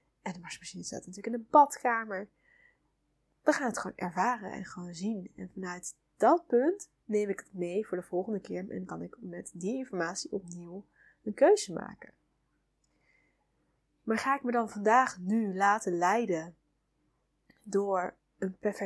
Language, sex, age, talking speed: Dutch, female, 10-29, 155 wpm